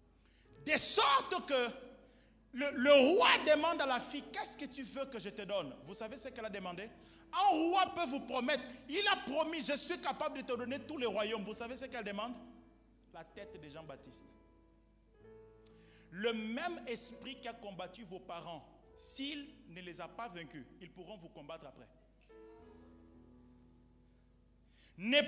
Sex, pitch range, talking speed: male, 210-285 Hz, 165 wpm